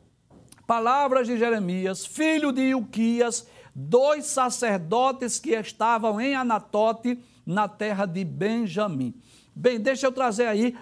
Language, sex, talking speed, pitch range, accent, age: Portuguese, male, 115 wpm, 165-235 Hz, Brazilian, 60-79